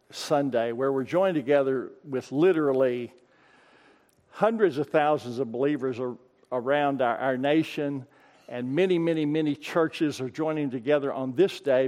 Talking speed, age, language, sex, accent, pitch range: 135 wpm, 50-69, English, male, American, 130-165 Hz